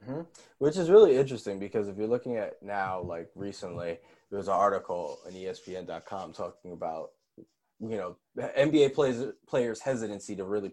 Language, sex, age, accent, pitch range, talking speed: English, male, 20-39, American, 105-140 Hz, 155 wpm